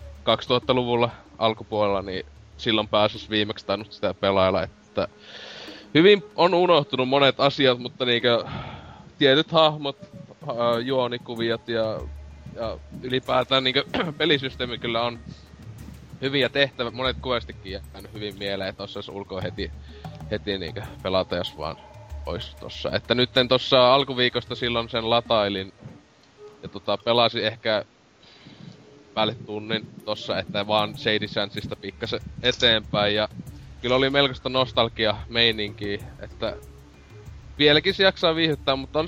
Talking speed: 115 wpm